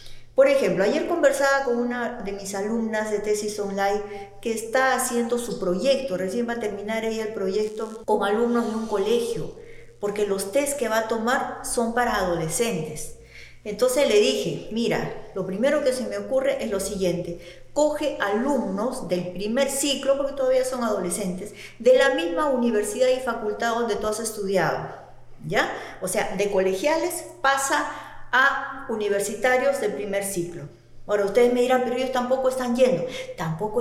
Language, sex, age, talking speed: Spanish, female, 40-59, 165 wpm